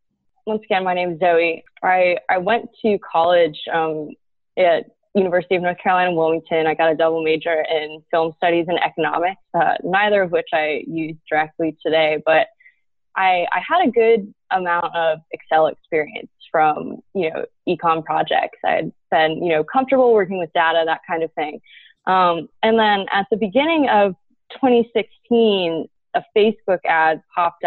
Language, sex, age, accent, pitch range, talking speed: English, female, 20-39, American, 160-205 Hz, 165 wpm